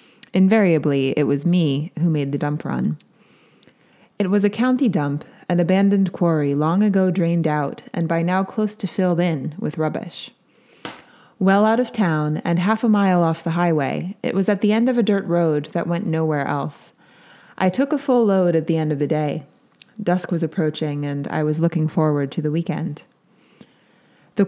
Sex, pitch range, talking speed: female, 150-195 Hz, 190 wpm